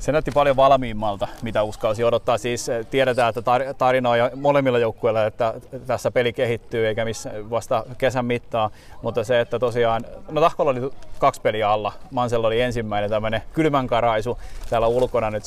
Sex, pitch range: male, 110-135 Hz